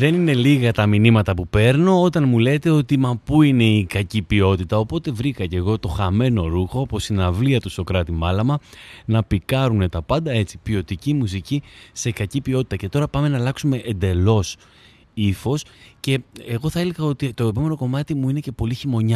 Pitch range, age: 95-130 Hz, 30-49